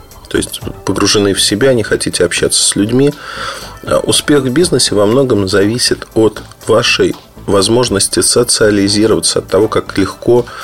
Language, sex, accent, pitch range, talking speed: Russian, male, native, 100-140 Hz, 135 wpm